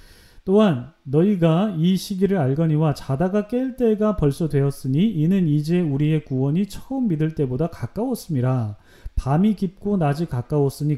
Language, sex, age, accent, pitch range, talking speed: English, male, 40-59, Korean, 130-195 Hz, 120 wpm